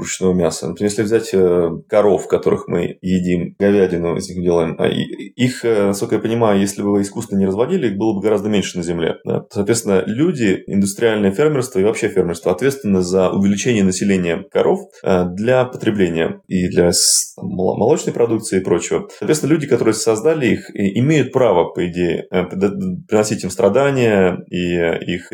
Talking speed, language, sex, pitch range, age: 150 wpm, Russian, male, 90-110 Hz, 20-39